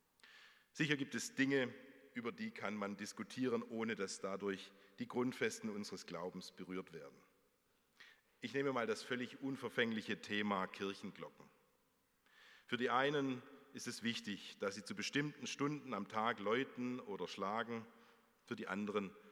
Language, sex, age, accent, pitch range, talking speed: German, male, 40-59, German, 100-135 Hz, 140 wpm